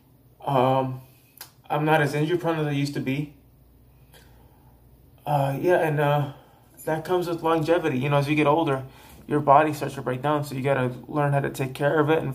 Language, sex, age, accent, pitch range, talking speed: English, male, 20-39, American, 125-150 Hz, 210 wpm